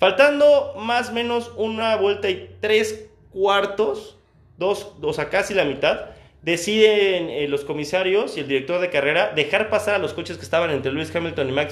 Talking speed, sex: 185 wpm, male